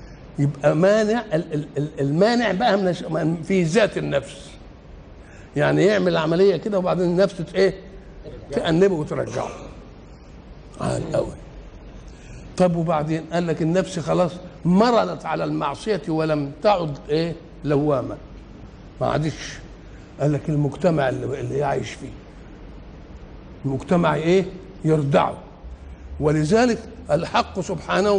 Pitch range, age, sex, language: 155-205 Hz, 60-79, male, Arabic